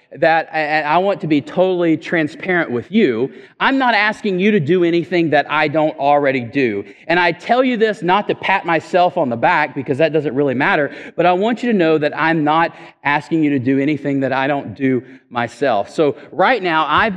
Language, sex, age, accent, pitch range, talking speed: English, male, 40-59, American, 150-210 Hz, 215 wpm